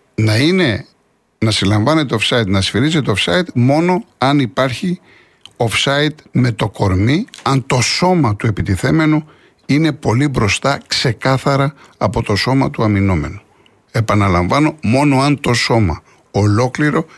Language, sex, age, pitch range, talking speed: Greek, male, 60-79, 110-150 Hz, 120 wpm